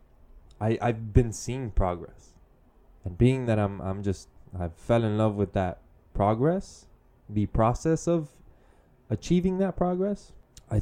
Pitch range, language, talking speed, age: 90-115 Hz, English, 135 wpm, 20-39